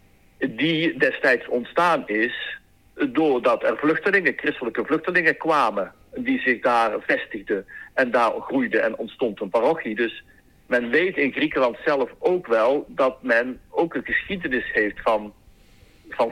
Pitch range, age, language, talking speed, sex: 110-170 Hz, 60-79, Dutch, 135 wpm, male